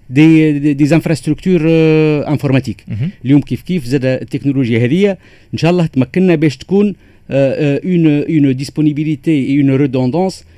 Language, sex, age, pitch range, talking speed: Arabic, male, 50-69, 125-160 Hz, 125 wpm